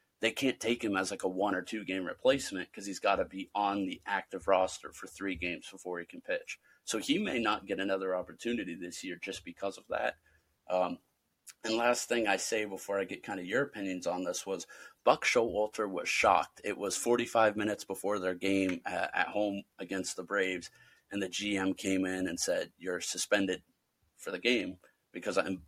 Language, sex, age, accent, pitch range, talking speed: English, male, 30-49, American, 95-105 Hz, 210 wpm